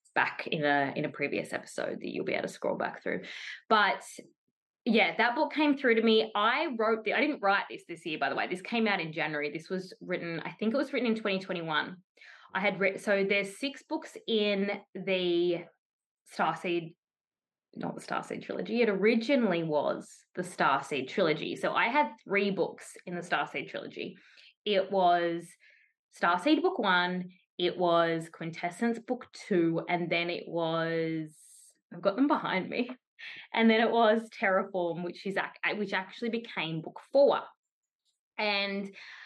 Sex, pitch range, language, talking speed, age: female, 175-230 Hz, English, 170 wpm, 20-39